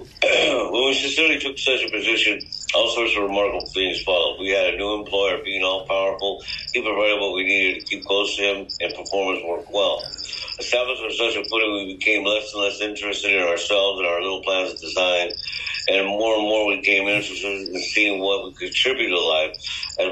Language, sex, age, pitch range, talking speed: English, male, 60-79, 95-110 Hz, 210 wpm